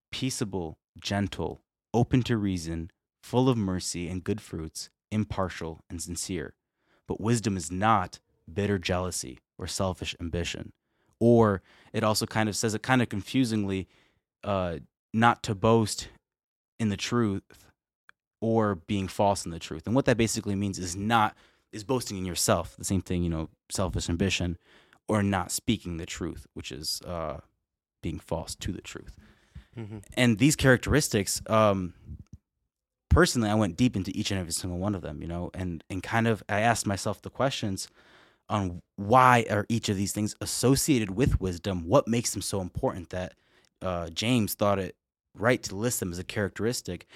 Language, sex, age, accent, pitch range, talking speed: English, male, 20-39, American, 90-115 Hz, 165 wpm